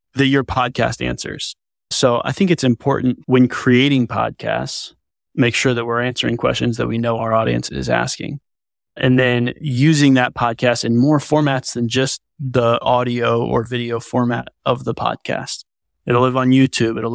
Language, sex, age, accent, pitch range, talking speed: English, male, 20-39, American, 115-135 Hz, 170 wpm